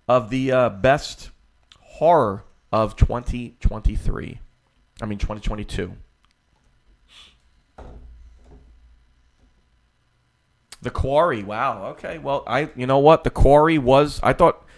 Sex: male